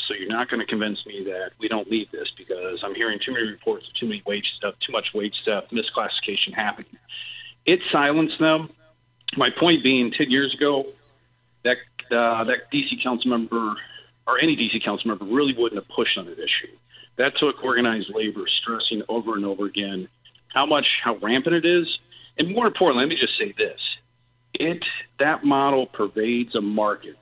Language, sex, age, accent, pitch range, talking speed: English, male, 40-59, American, 115-145 Hz, 185 wpm